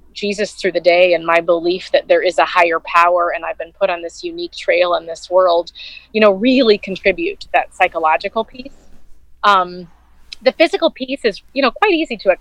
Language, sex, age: English, female, 30-49